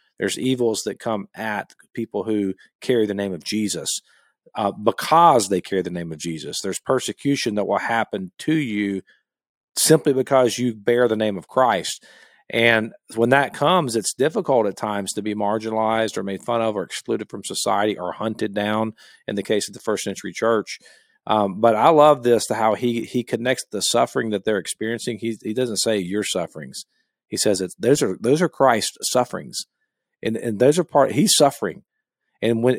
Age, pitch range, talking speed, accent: 40-59, 105-125 Hz, 190 wpm, American